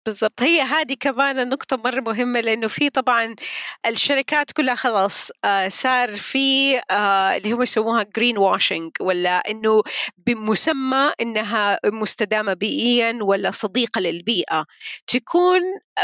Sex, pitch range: female, 210-270 Hz